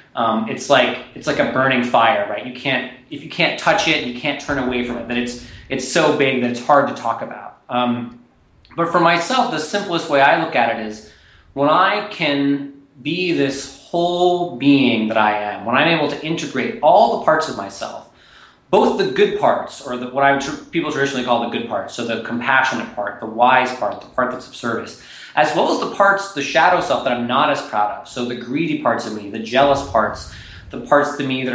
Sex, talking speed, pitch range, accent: male, 225 wpm, 120-145 Hz, American